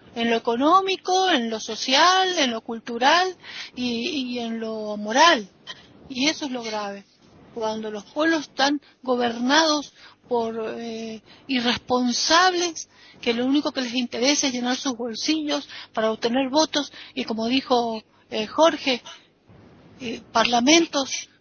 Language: Spanish